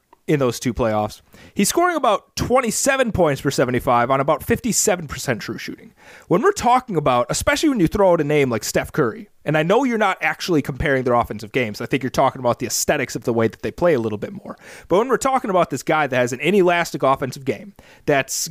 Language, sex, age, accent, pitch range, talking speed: English, male, 30-49, American, 135-200 Hz, 230 wpm